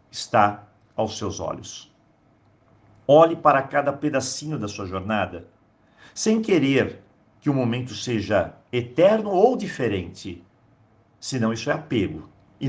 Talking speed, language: 120 wpm, Portuguese